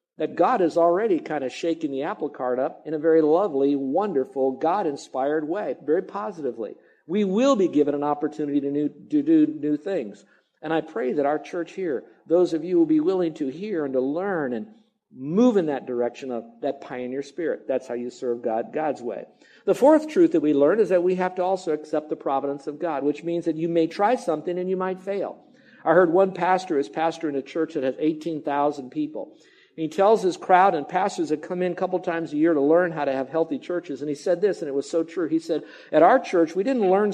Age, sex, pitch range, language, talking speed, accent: 50-69, male, 145-185 Hz, English, 230 wpm, American